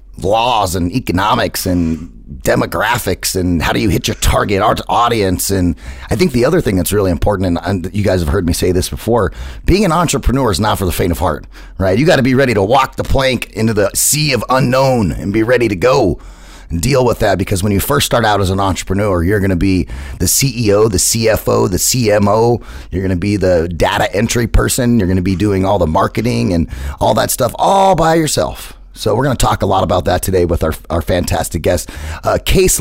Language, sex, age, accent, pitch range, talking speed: English, male, 30-49, American, 90-120 Hz, 225 wpm